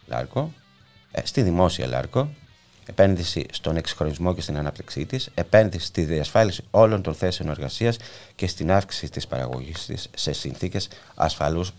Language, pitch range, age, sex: Greek, 70-100 Hz, 30-49, male